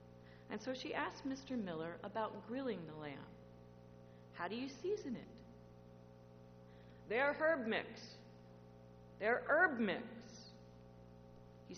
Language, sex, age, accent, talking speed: English, female, 40-59, American, 110 wpm